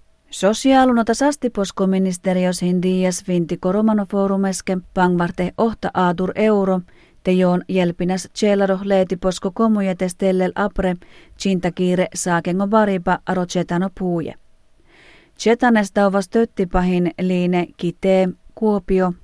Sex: female